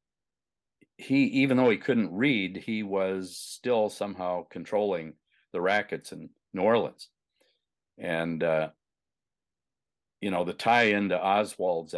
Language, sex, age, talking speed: English, male, 50-69, 120 wpm